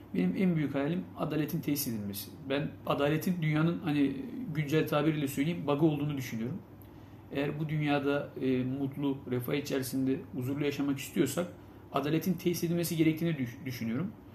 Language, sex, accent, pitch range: Turkish, male, native, 130-160 Hz